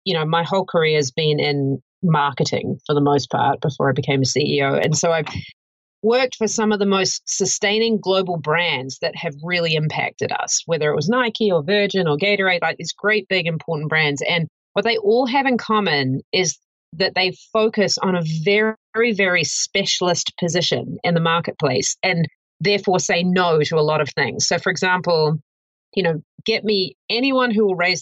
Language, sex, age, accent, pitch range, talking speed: English, female, 30-49, Australian, 155-200 Hz, 190 wpm